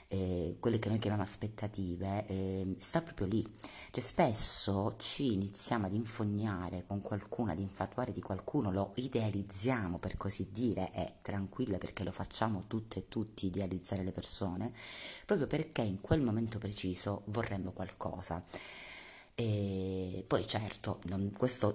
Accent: native